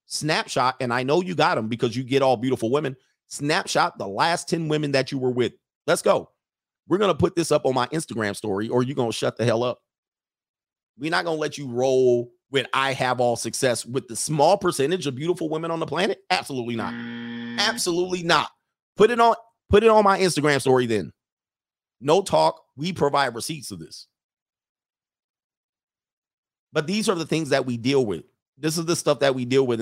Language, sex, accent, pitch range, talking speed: English, male, American, 125-170 Hz, 200 wpm